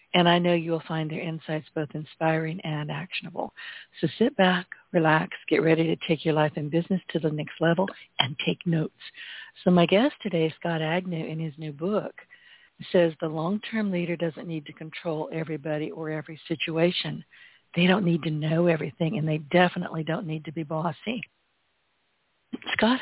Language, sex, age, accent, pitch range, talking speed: English, female, 60-79, American, 160-190 Hz, 175 wpm